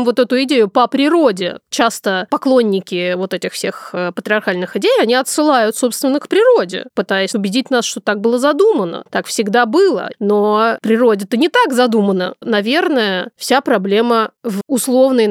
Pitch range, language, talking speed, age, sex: 205-250 Hz, Russian, 145 wpm, 20-39, female